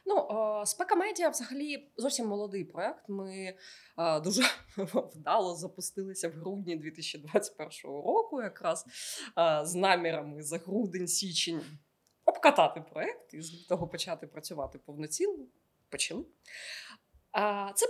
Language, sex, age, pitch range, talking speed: Ukrainian, female, 20-39, 165-245 Hz, 100 wpm